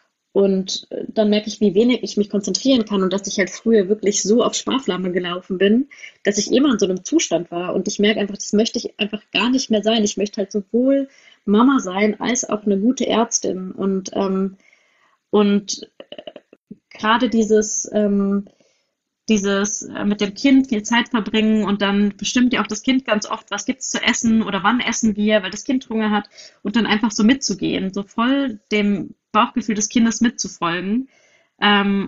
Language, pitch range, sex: German, 200-230 Hz, female